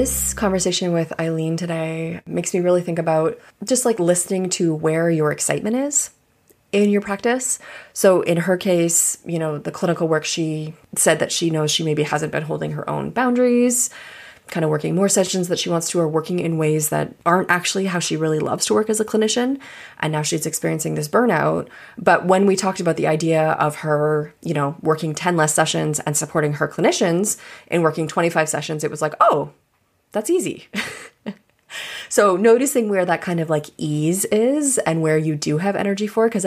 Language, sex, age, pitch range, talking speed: English, female, 20-39, 150-190 Hz, 195 wpm